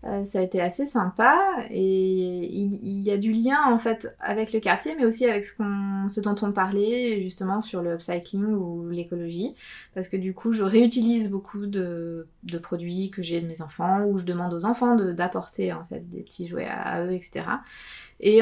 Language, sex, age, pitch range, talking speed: French, female, 20-39, 180-215 Hz, 210 wpm